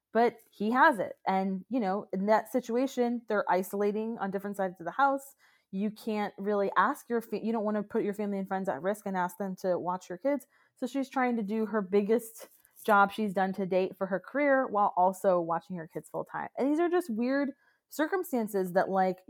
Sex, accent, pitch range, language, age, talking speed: female, American, 175-225 Hz, English, 20-39, 220 wpm